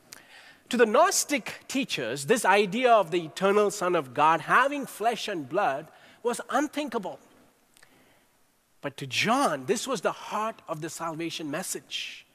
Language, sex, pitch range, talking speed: English, male, 145-230 Hz, 140 wpm